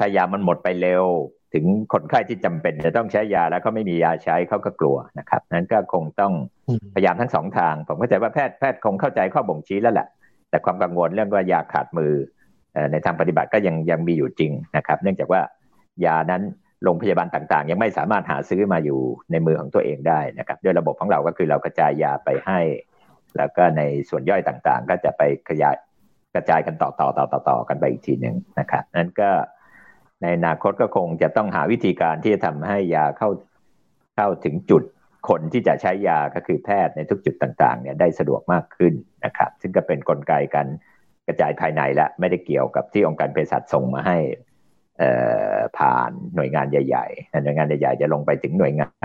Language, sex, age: Thai, male, 50-69